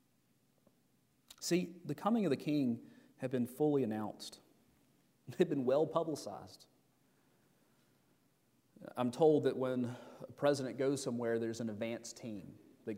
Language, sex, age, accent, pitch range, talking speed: English, male, 30-49, American, 120-155 Hz, 125 wpm